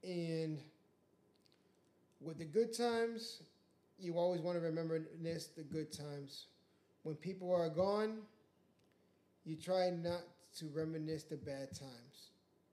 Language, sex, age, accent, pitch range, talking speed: English, male, 20-39, American, 150-175 Hz, 125 wpm